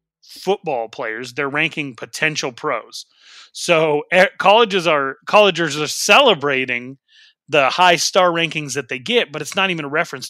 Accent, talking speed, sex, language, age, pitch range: American, 145 wpm, male, English, 30-49, 130-165 Hz